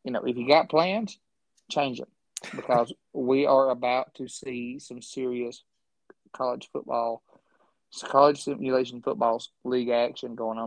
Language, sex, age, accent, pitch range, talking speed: English, male, 20-39, American, 120-135 Hz, 140 wpm